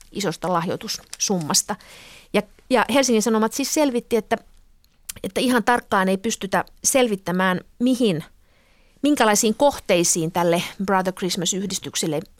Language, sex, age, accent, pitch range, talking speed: Finnish, female, 30-49, native, 175-220 Hz, 105 wpm